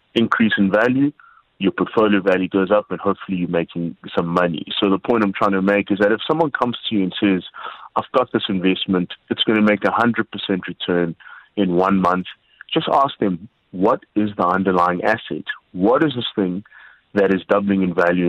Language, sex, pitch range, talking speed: English, male, 90-110 Hz, 205 wpm